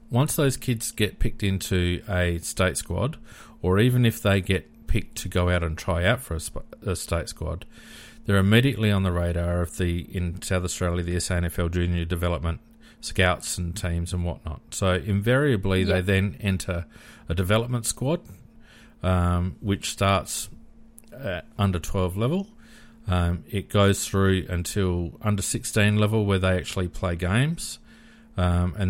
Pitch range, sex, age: 85-110 Hz, male, 40-59